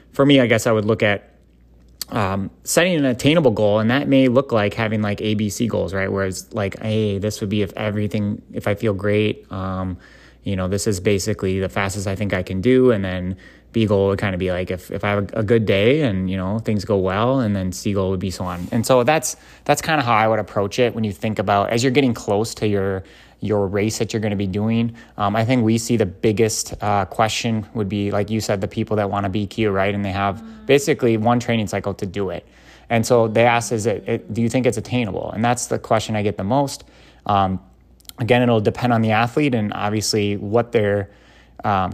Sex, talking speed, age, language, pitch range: male, 240 wpm, 20-39, English, 100-120 Hz